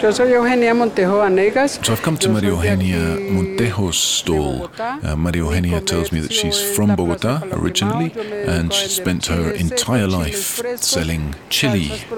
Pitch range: 80-110 Hz